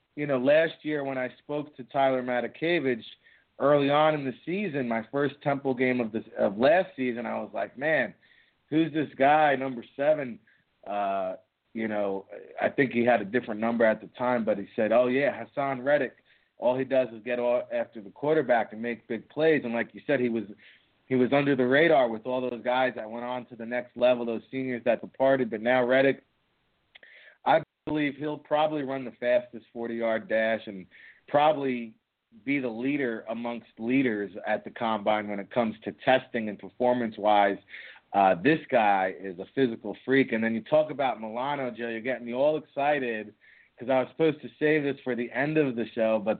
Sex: male